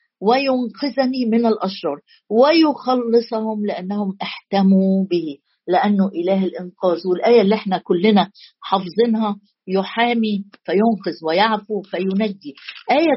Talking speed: 90 wpm